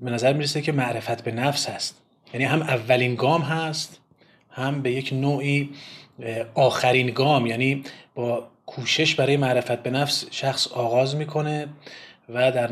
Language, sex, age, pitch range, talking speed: Persian, male, 30-49, 120-145 Hz, 145 wpm